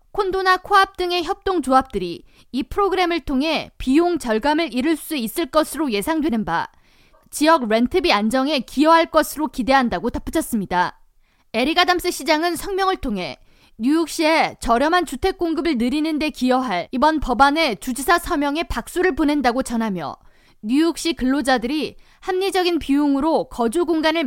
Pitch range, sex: 245-335 Hz, female